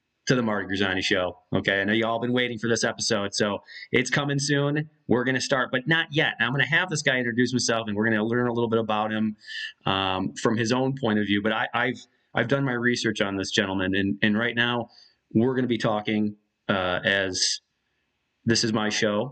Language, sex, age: English, male, 30-49